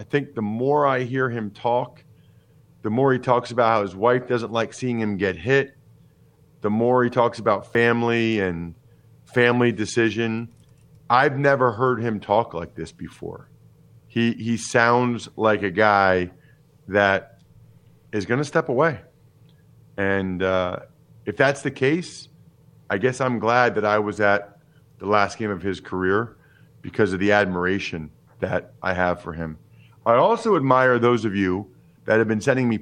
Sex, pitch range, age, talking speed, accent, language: male, 105-135 Hz, 40-59, 165 wpm, American, English